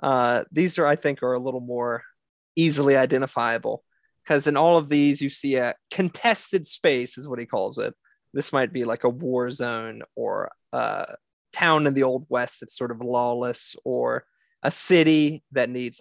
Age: 20-39